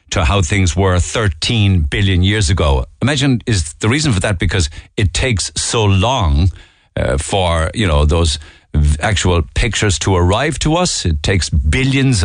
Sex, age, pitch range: male, 60-79, 80-100 Hz